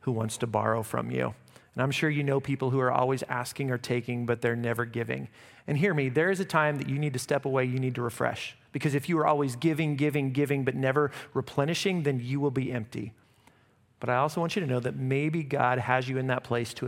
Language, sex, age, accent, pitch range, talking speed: English, male, 40-59, American, 120-140 Hz, 250 wpm